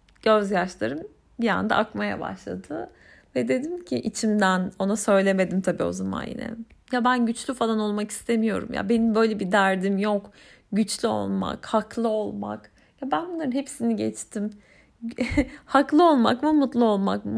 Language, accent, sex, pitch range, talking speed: Turkish, native, female, 195-255 Hz, 150 wpm